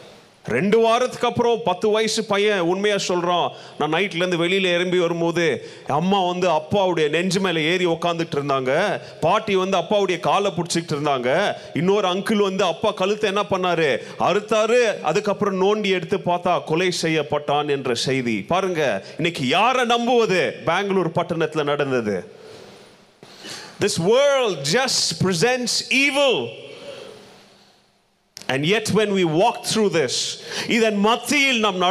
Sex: male